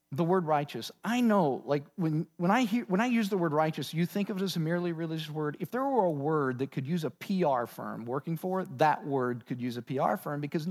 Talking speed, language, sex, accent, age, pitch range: 265 wpm, English, male, American, 40-59, 120-180 Hz